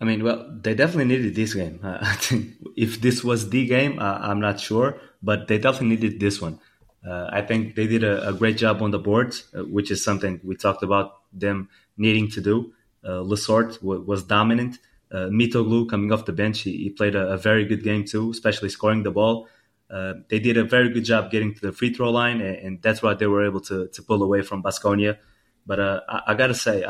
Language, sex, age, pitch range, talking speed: English, male, 20-39, 100-115 Hz, 240 wpm